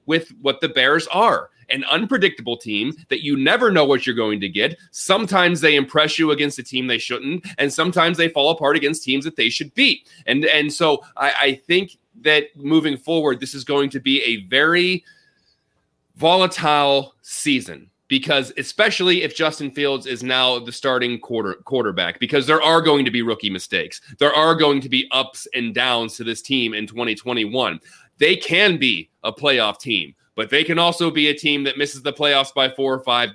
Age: 30-49